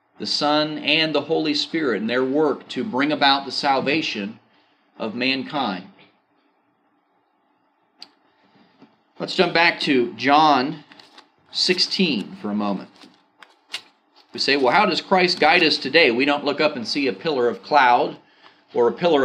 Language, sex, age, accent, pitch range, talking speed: English, male, 40-59, American, 120-160 Hz, 145 wpm